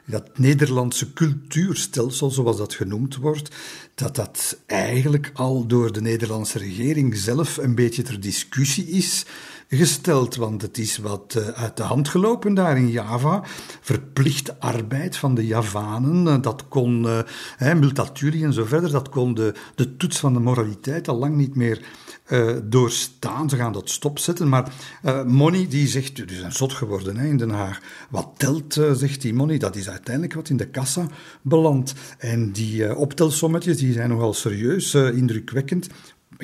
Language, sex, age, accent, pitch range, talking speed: Dutch, male, 50-69, Belgian, 115-145 Hz, 165 wpm